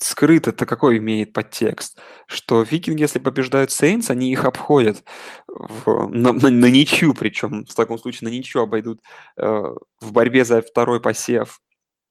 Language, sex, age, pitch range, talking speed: Russian, male, 20-39, 110-130 Hz, 150 wpm